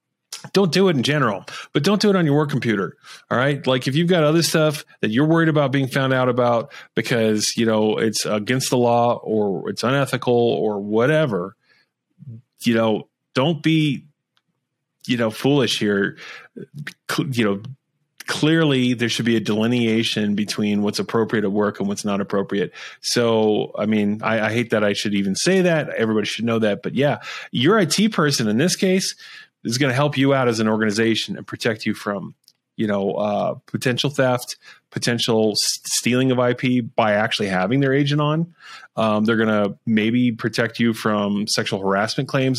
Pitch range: 105-140 Hz